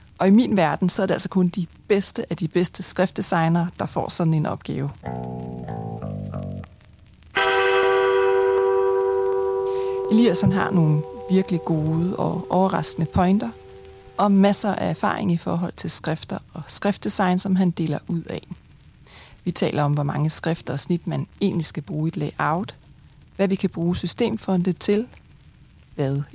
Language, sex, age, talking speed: Danish, female, 30-49, 150 wpm